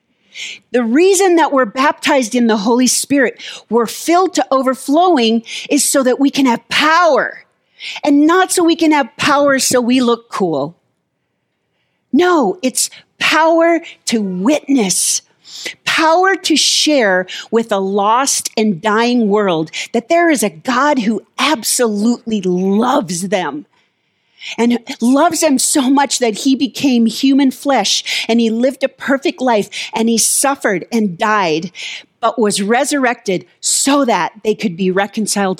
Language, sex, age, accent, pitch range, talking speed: English, female, 40-59, American, 215-280 Hz, 140 wpm